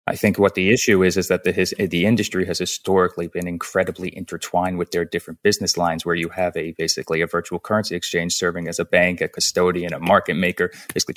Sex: male